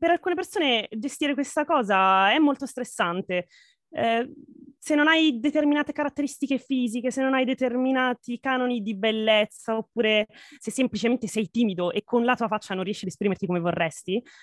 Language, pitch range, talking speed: Italian, 200-260 Hz, 160 wpm